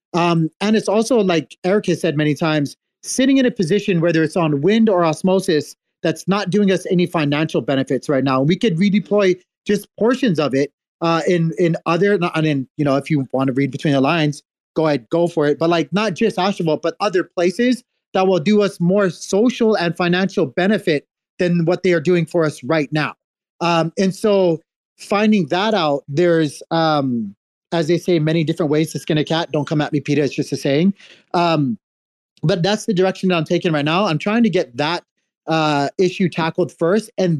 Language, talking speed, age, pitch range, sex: English, 210 wpm, 30-49, 155-190 Hz, male